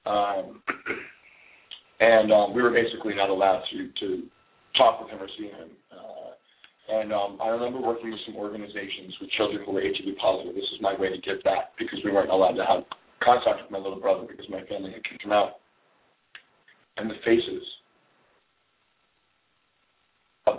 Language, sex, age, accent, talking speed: English, male, 40-59, American, 175 wpm